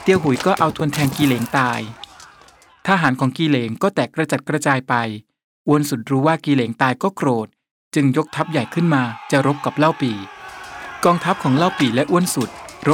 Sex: male